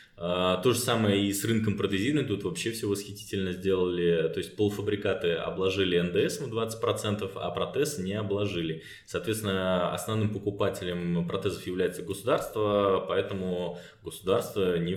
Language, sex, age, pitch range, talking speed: Russian, male, 20-39, 90-105 Hz, 130 wpm